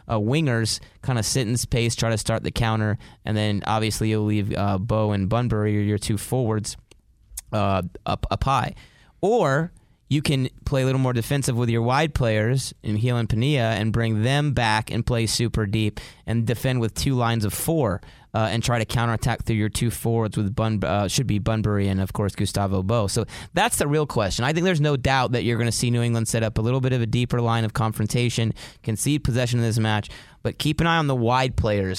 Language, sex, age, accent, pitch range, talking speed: English, male, 20-39, American, 105-125 Hz, 225 wpm